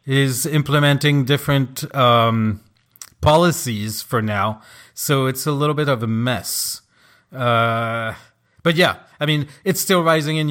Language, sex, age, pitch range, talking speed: English, male, 40-59, 130-155 Hz, 135 wpm